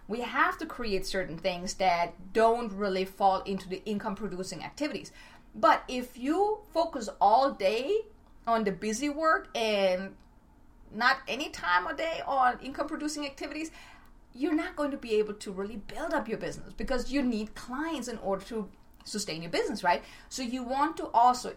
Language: English